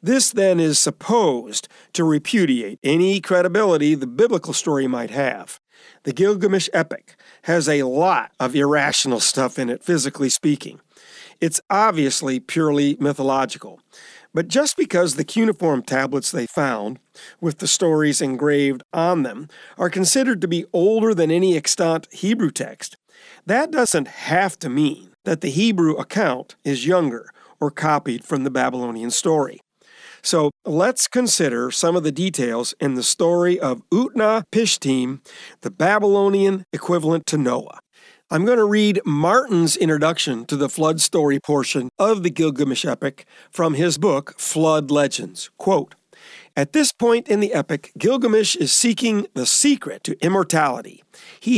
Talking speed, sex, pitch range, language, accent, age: 145 wpm, male, 145-210 Hz, English, American, 50-69